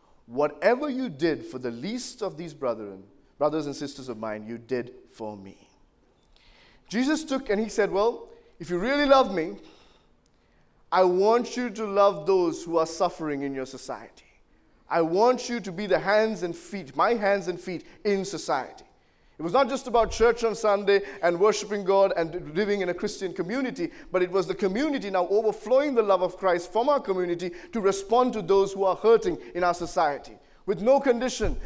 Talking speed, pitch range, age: 190 wpm, 185-250 Hz, 30-49